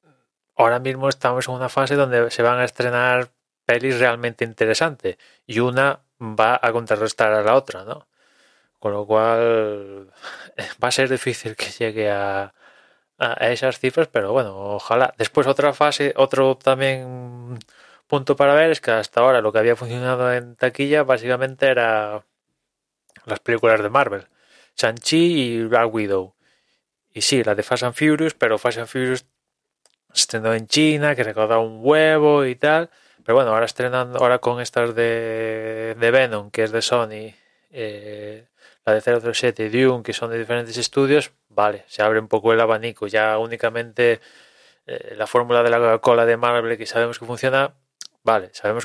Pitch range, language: 110-130 Hz, Spanish